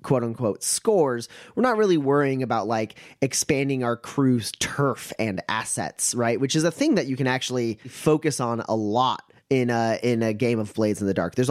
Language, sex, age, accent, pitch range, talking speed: English, male, 30-49, American, 110-140 Hz, 205 wpm